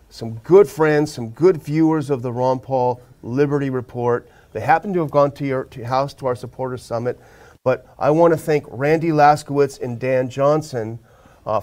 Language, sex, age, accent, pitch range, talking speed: English, male, 40-59, American, 115-145 Hz, 180 wpm